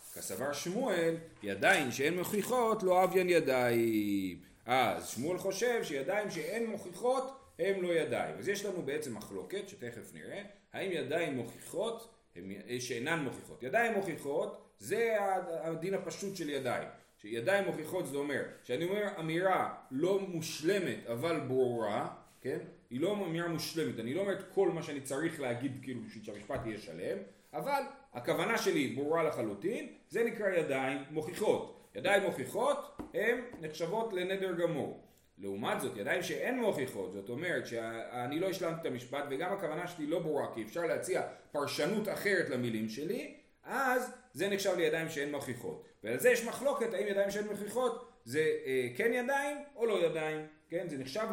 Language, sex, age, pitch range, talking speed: Hebrew, male, 30-49, 135-205 Hz, 150 wpm